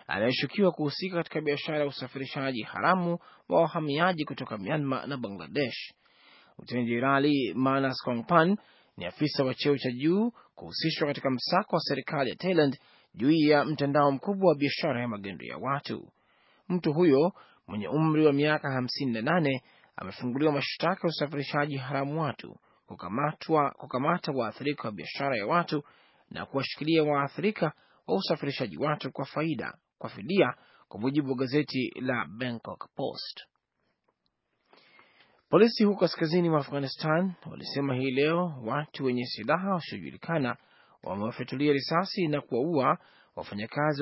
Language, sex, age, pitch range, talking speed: Swahili, male, 30-49, 130-160 Hz, 125 wpm